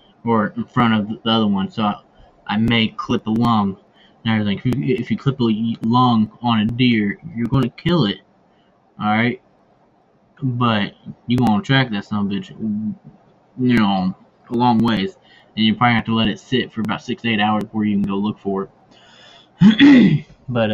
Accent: American